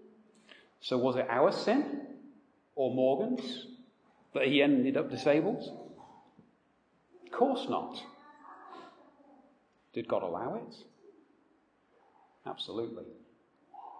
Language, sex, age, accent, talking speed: English, male, 40-59, British, 85 wpm